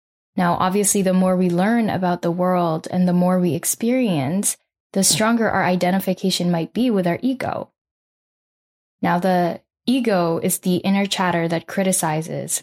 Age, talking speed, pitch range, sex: 10-29, 150 wpm, 180-205 Hz, female